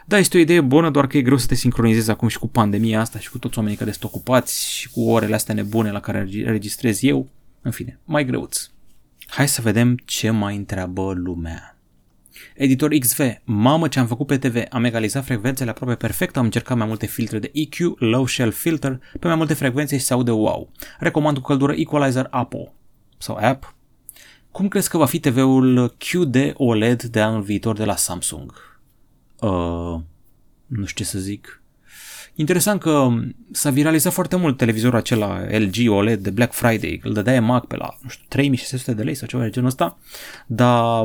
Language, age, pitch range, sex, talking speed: Romanian, 30-49, 110-145 Hz, male, 185 wpm